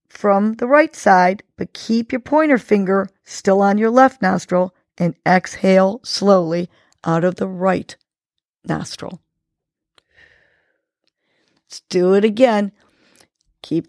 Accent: American